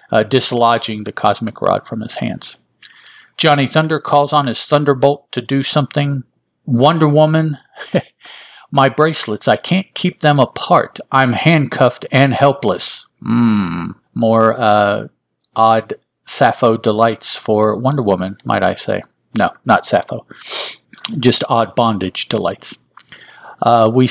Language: English